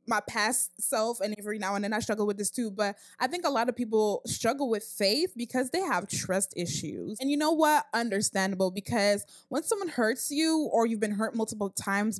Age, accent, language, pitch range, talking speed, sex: 20-39, American, English, 210-250 Hz, 215 wpm, female